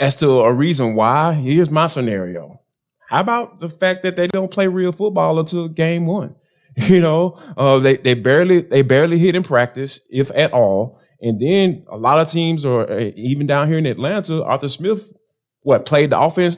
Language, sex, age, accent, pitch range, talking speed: English, male, 20-39, American, 125-170 Hz, 190 wpm